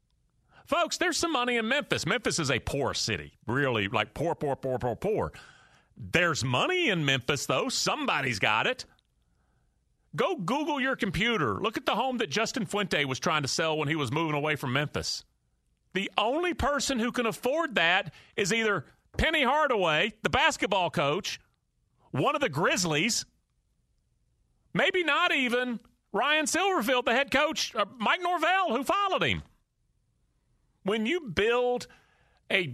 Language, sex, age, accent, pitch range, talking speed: English, male, 40-59, American, 145-240 Hz, 150 wpm